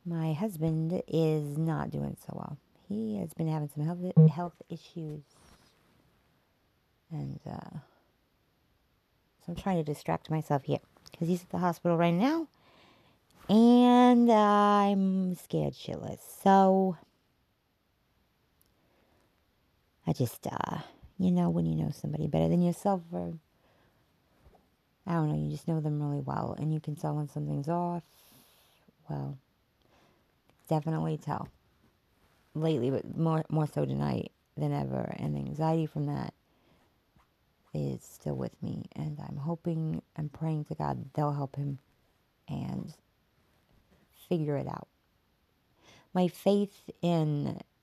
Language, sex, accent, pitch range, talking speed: English, female, American, 115-175 Hz, 130 wpm